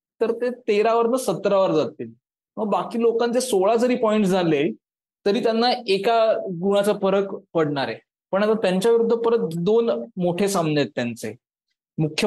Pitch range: 170-220 Hz